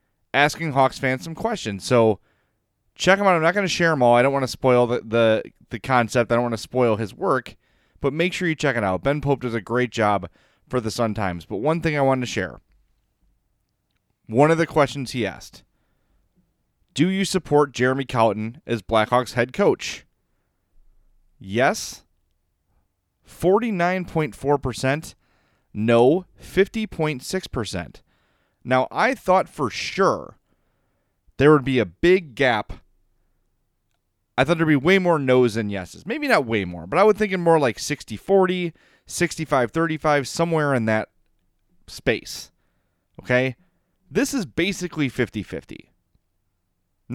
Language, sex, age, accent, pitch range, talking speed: English, male, 30-49, American, 100-150 Hz, 150 wpm